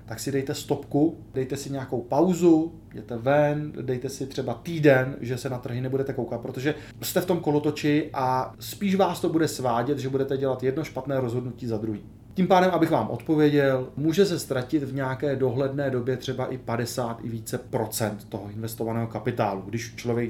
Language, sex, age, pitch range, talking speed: Czech, male, 30-49, 115-140 Hz, 185 wpm